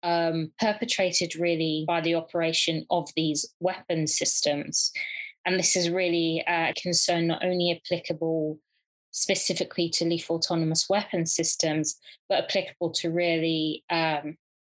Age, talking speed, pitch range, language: 20-39, 125 wpm, 165-185 Hz, English